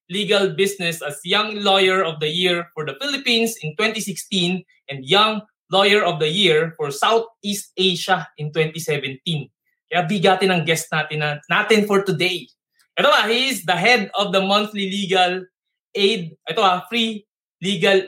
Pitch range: 165-210 Hz